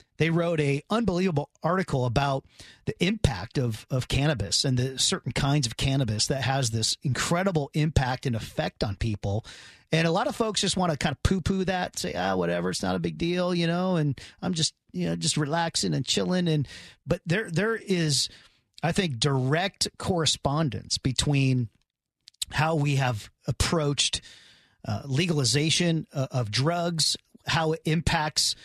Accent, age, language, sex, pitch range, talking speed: American, 40-59, English, male, 130-170 Hz, 170 wpm